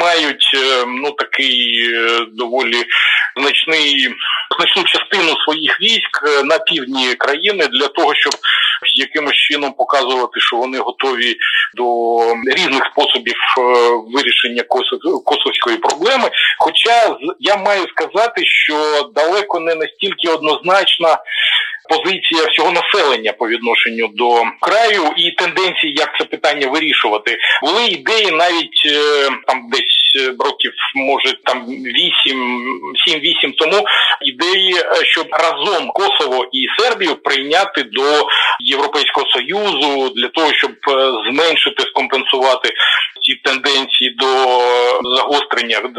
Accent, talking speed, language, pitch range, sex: native, 105 wpm, Ukrainian, 125-195 Hz, male